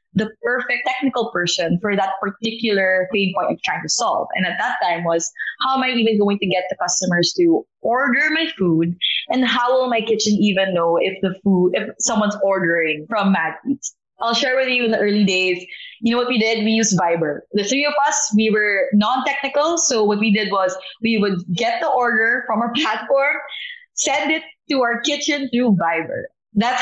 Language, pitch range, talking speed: English, 185-240 Hz, 205 wpm